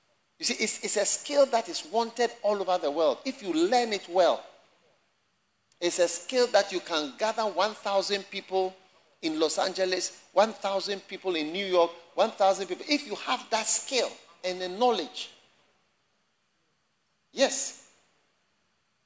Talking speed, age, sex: 145 wpm, 50-69, male